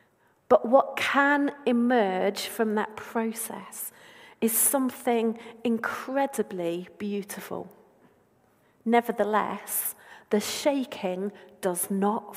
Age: 40-59